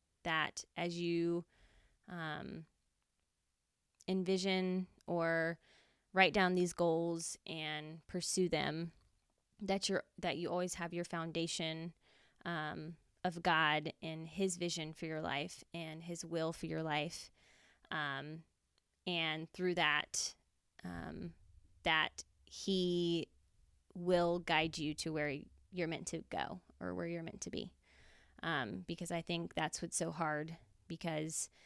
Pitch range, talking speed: 160-180 Hz, 125 wpm